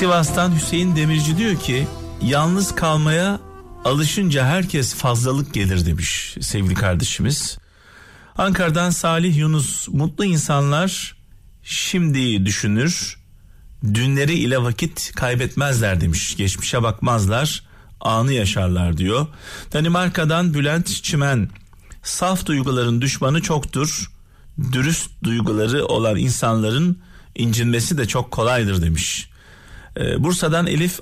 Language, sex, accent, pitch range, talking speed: Turkish, male, native, 100-160 Hz, 95 wpm